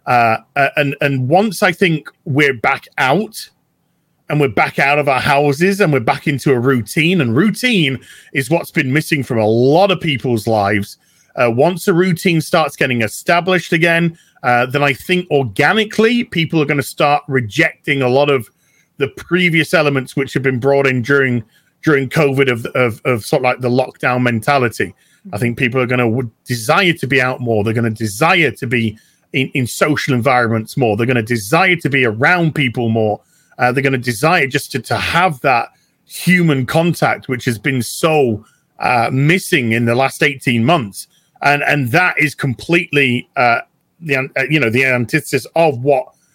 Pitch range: 125-160 Hz